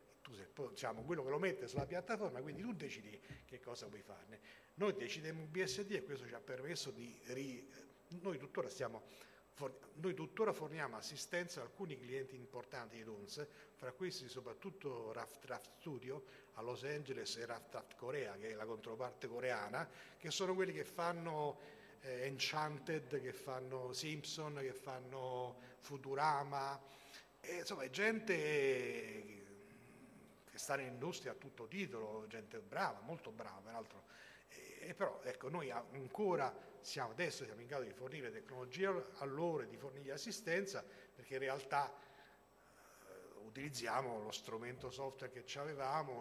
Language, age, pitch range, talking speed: Italian, 40-59, 125-155 Hz, 150 wpm